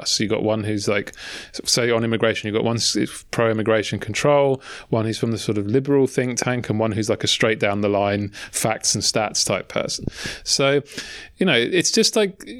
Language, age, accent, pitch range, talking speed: Dutch, 30-49, British, 110-135 Hz, 180 wpm